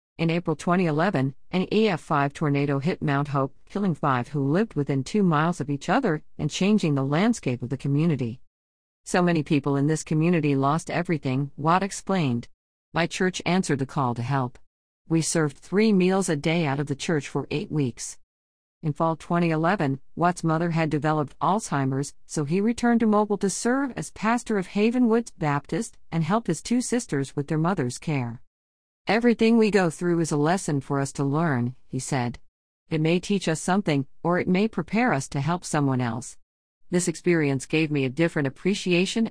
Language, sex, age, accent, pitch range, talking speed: English, female, 50-69, American, 135-180 Hz, 180 wpm